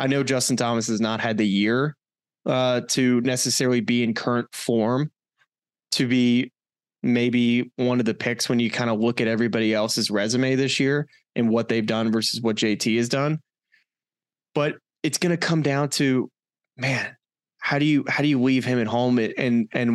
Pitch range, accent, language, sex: 115-130 Hz, American, English, male